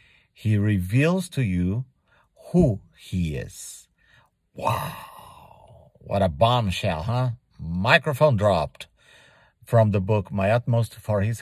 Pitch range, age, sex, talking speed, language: 95-125 Hz, 50-69, male, 110 wpm, English